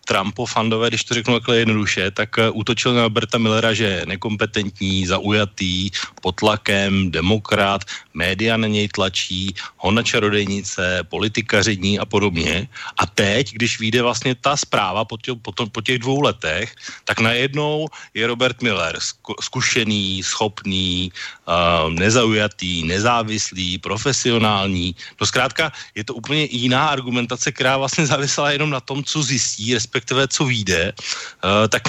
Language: Slovak